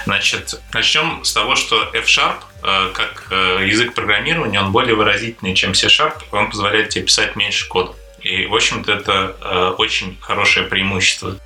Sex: male